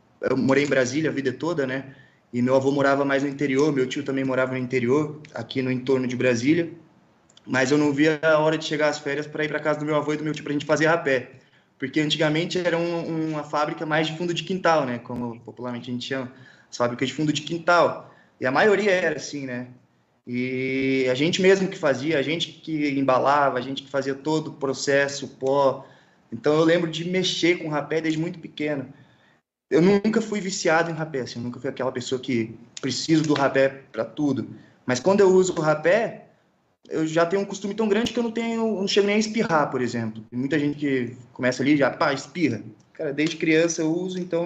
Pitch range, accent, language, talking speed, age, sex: 130-170 Hz, Brazilian, Portuguese, 225 wpm, 20-39, male